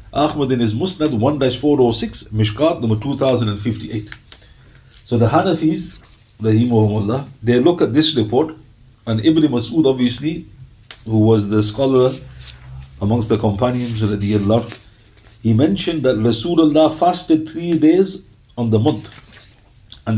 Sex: male